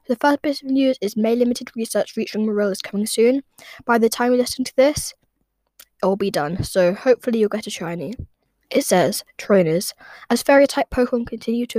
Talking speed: 205 wpm